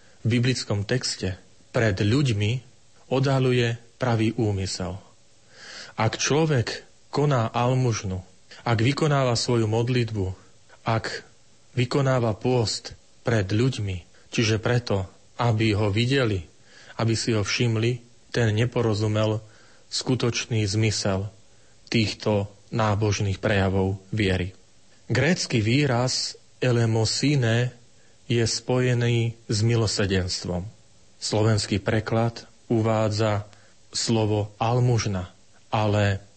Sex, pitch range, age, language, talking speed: male, 105-120 Hz, 40-59, Slovak, 85 wpm